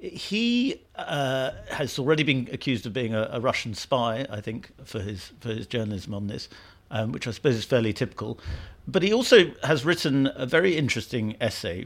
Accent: British